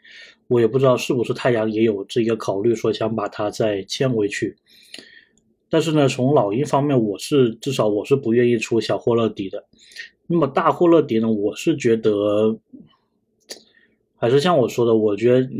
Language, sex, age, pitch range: Chinese, male, 20-39, 110-135 Hz